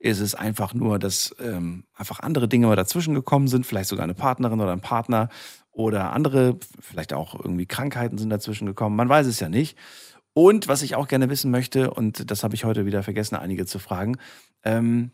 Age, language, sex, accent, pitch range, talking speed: 40-59, German, male, German, 105-130 Hz, 205 wpm